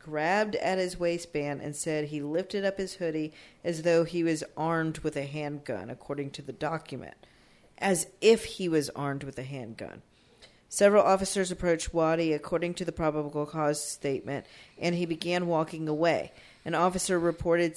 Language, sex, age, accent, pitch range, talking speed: English, female, 40-59, American, 150-190 Hz, 165 wpm